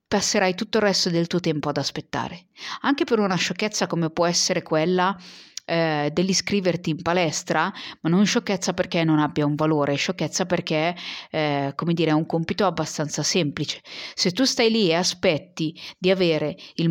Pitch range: 165-205 Hz